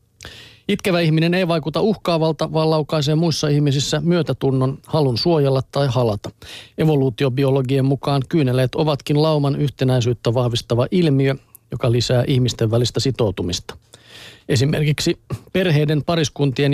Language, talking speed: Finnish, 110 wpm